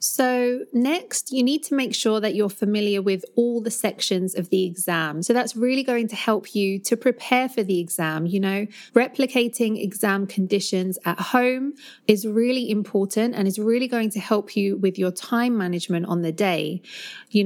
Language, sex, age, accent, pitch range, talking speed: English, female, 30-49, British, 190-225 Hz, 185 wpm